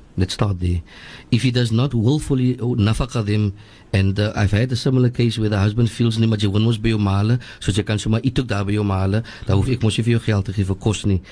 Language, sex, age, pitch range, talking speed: English, male, 50-69, 100-125 Hz, 110 wpm